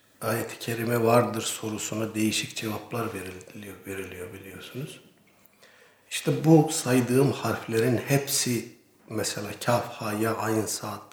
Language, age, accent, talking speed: Turkish, 60-79, native, 110 wpm